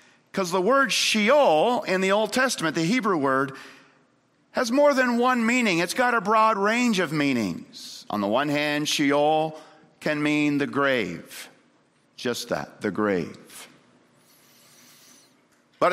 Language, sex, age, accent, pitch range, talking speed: English, male, 50-69, American, 150-220 Hz, 140 wpm